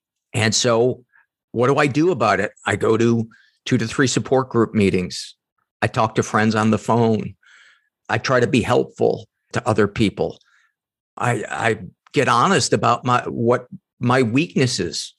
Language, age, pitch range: English, 50-69, 100-120 Hz